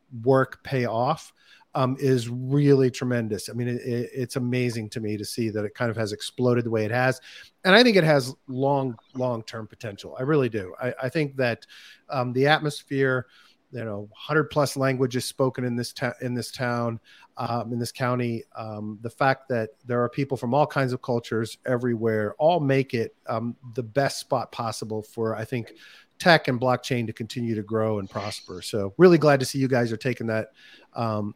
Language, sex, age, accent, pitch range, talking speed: English, male, 40-59, American, 115-135 Hz, 200 wpm